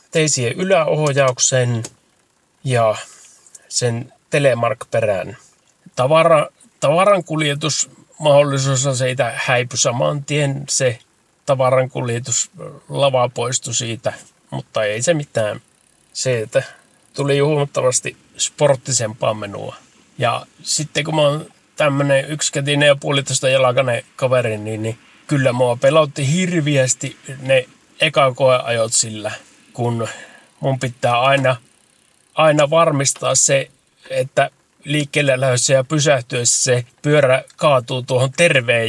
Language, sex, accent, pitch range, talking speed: Finnish, male, native, 125-150 Hz, 95 wpm